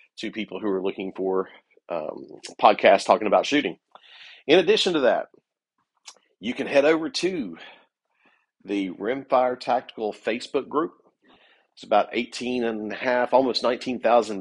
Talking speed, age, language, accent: 135 wpm, 50-69, English, American